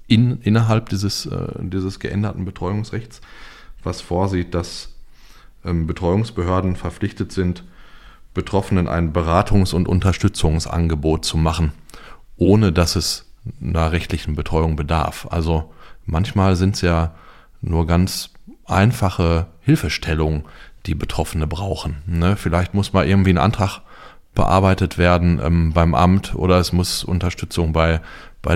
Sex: male